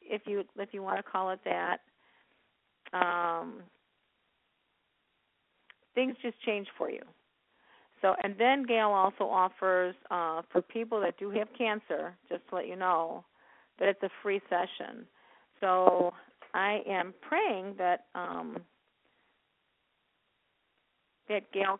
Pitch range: 185-235 Hz